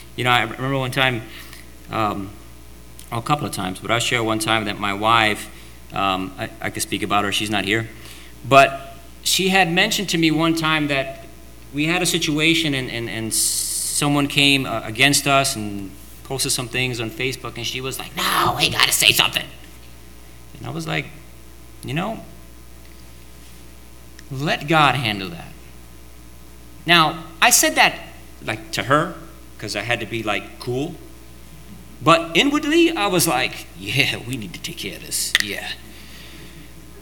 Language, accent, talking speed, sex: English, American, 170 wpm, male